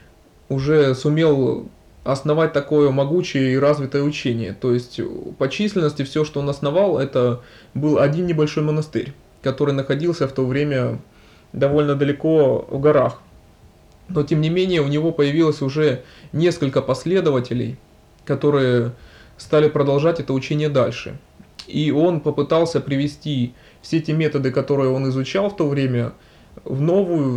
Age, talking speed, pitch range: 20-39, 135 wpm, 130-155 Hz